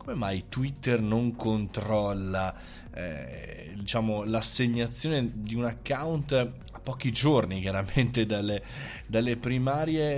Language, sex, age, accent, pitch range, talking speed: Italian, male, 20-39, native, 100-125 Hz, 105 wpm